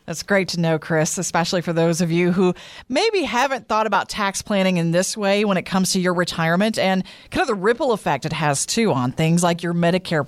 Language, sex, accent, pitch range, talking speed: English, female, American, 170-225 Hz, 235 wpm